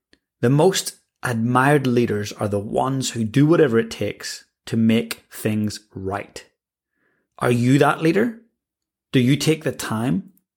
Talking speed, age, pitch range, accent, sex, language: 140 wpm, 30-49, 110-130 Hz, British, male, English